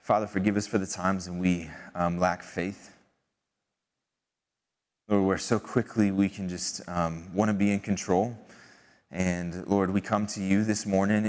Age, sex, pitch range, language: 20-39, male, 95-110 Hz, English